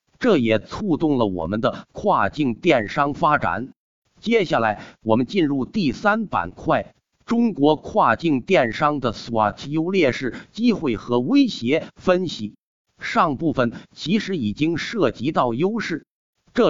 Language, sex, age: Chinese, male, 50-69